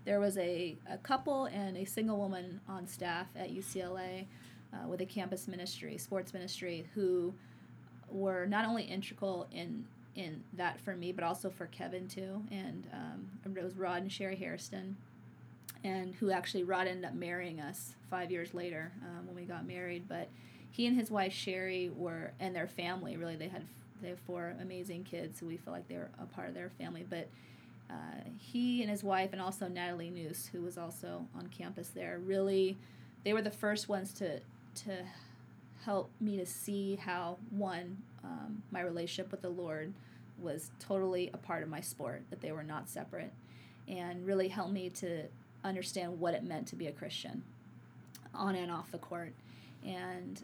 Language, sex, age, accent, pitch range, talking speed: English, female, 20-39, American, 175-195 Hz, 185 wpm